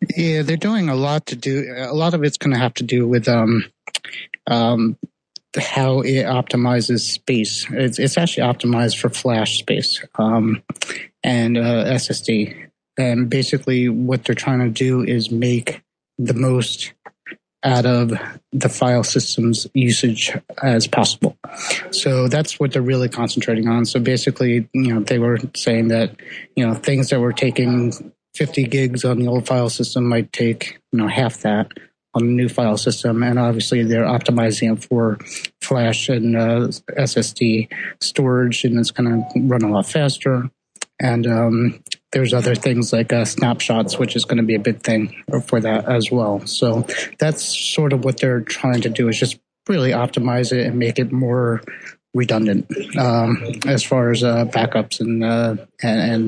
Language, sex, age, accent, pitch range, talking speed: English, male, 30-49, American, 115-130 Hz, 170 wpm